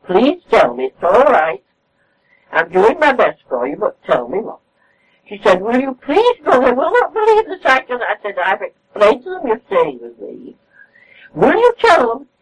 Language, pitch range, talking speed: English, 190-315 Hz, 195 wpm